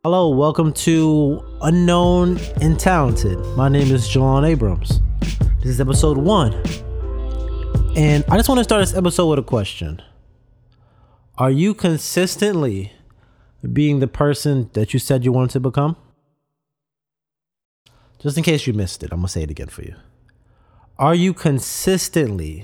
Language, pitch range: English, 115-150 Hz